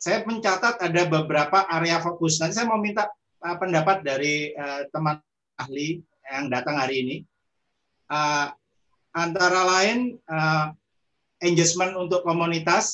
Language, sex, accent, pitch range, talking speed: Indonesian, male, native, 150-195 Hz, 105 wpm